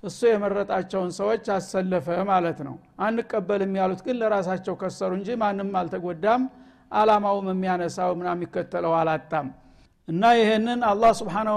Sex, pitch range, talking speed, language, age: male, 195-230 Hz, 115 wpm, Amharic, 60-79